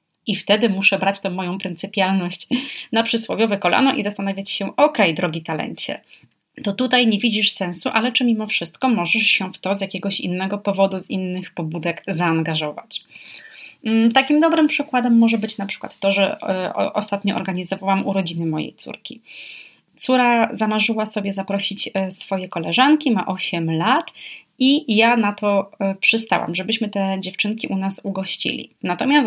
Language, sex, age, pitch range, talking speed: Polish, female, 30-49, 185-225 Hz, 150 wpm